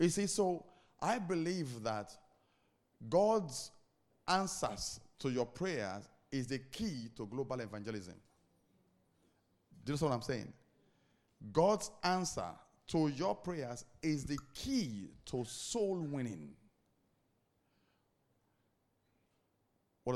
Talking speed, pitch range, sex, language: 105 wpm, 115-180 Hz, male, English